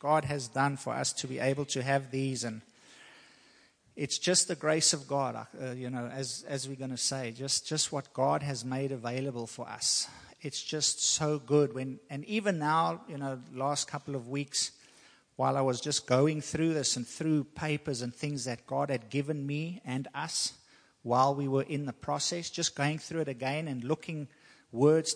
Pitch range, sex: 125-150 Hz, male